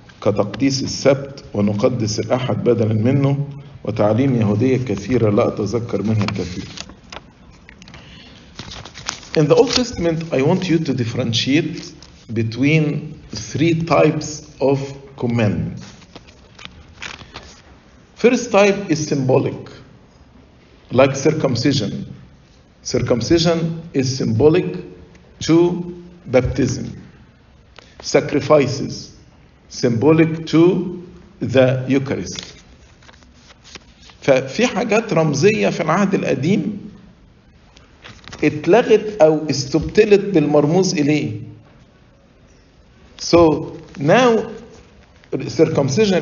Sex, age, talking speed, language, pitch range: male, 50-69, 45 wpm, English, 125-170 Hz